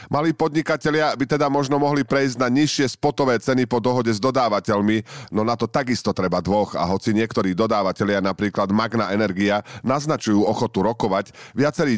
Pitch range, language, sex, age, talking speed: 100-125 Hz, Slovak, male, 40-59, 160 wpm